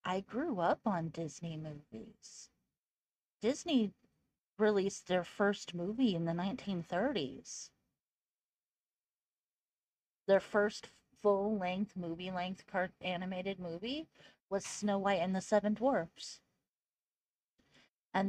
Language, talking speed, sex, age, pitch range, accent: English, 90 wpm, female, 30-49, 180-230 Hz, American